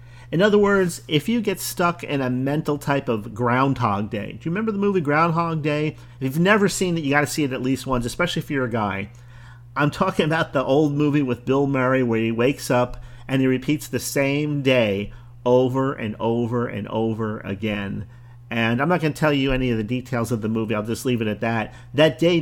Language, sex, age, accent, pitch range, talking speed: English, male, 40-59, American, 120-145 Hz, 230 wpm